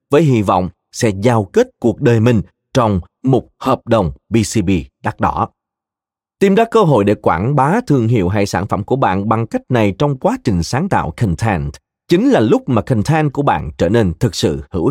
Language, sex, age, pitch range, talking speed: Vietnamese, male, 30-49, 105-165 Hz, 205 wpm